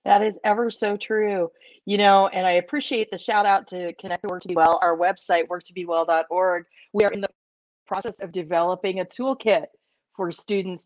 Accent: American